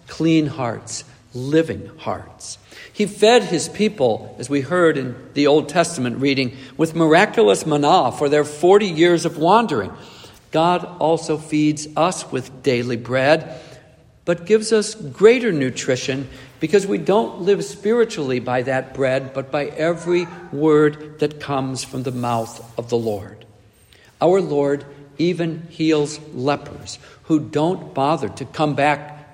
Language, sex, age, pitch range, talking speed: English, male, 60-79, 125-175 Hz, 140 wpm